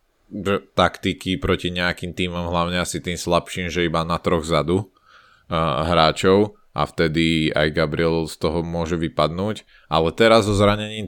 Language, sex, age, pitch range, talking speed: Slovak, male, 20-39, 80-90 Hz, 145 wpm